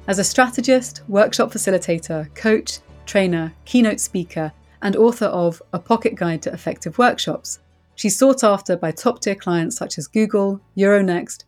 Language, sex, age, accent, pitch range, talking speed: English, female, 30-49, British, 170-220 Hz, 145 wpm